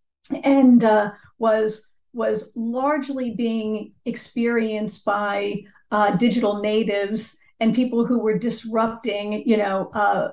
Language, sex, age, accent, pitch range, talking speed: English, female, 50-69, American, 205-230 Hz, 110 wpm